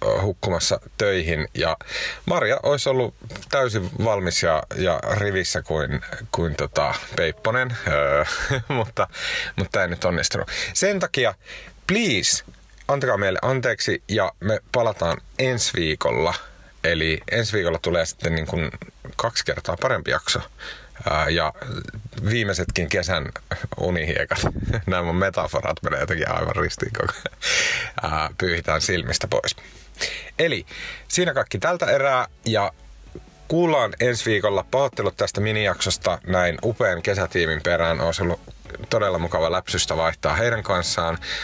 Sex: male